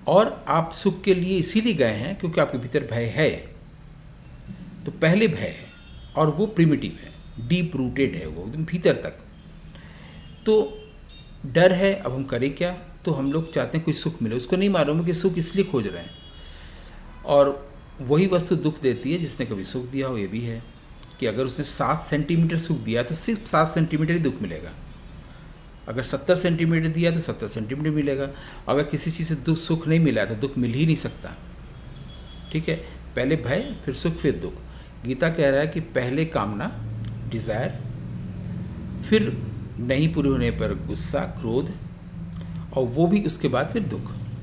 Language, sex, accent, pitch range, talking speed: English, male, Indian, 115-165 Hz, 155 wpm